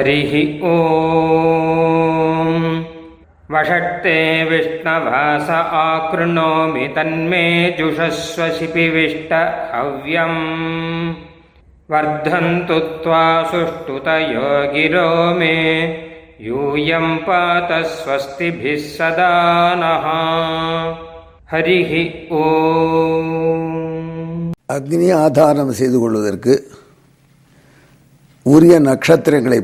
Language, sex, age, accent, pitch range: Tamil, male, 50-69, native, 135-165 Hz